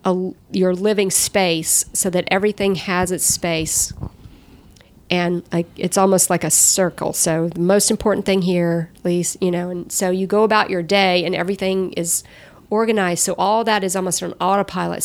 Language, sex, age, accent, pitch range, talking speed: English, female, 40-59, American, 175-195 Hz, 180 wpm